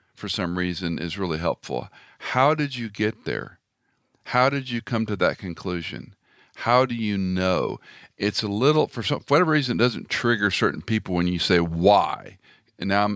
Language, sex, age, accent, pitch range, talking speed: English, male, 50-69, American, 95-120 Hz, 180 wpm